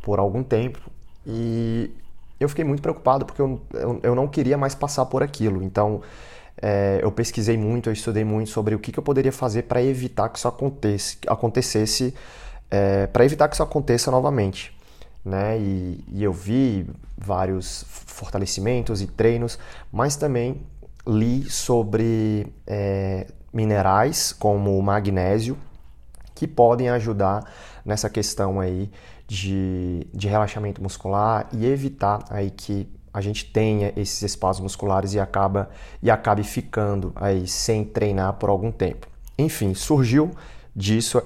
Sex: male